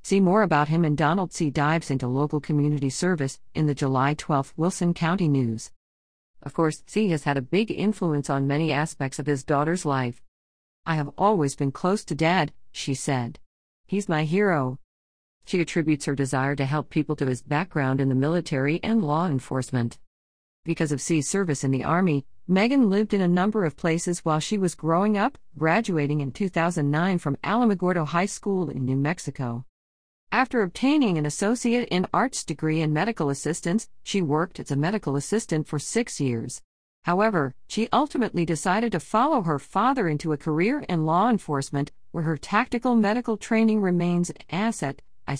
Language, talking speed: English, 175 wpm